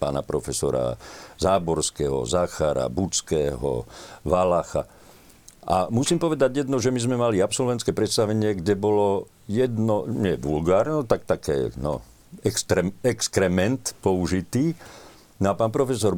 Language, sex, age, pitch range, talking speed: Slovak, male, 50-69, 95-125 Hz, 110 wpm